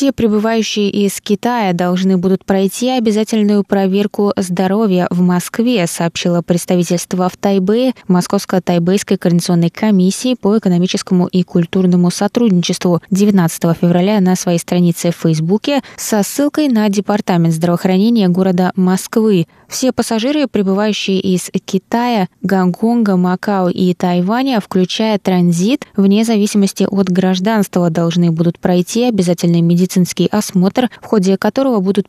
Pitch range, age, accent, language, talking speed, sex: 180-210 Hz, 20-39, native, Russian, 120 wpm, female